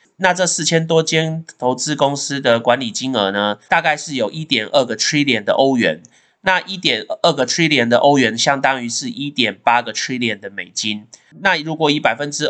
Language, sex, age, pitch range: Chinese, male, 20-39, 115-155 Hz